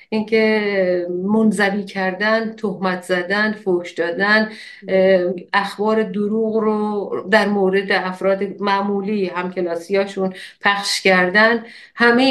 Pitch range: 180-215 Hz